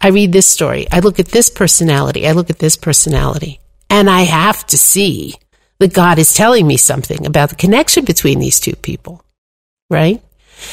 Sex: female